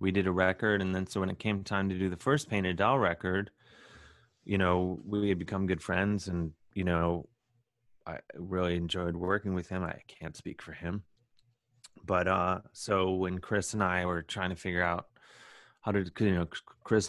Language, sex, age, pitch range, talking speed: English, male, 30-49, 85-105 Hz, 195 wpm